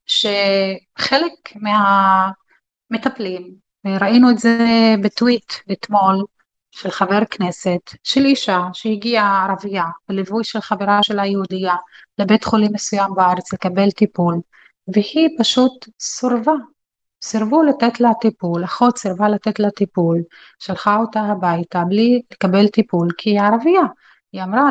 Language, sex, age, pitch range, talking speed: Hebrew, female, 30-49, 190-230 Hz, 115 wpm